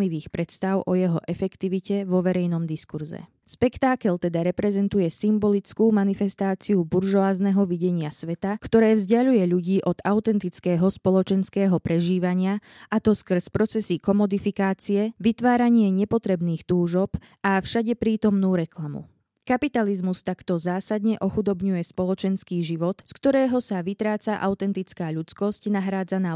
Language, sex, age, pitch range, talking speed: Slovak, female, 20-39, 175-210 Hz, 105 wpm